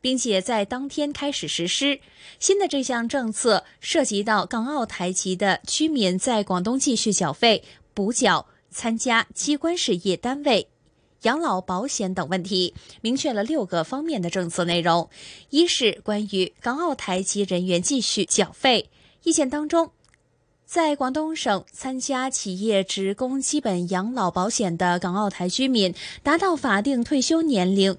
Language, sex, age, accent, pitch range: Chinese, female, 20-39, native, 185-270 Hz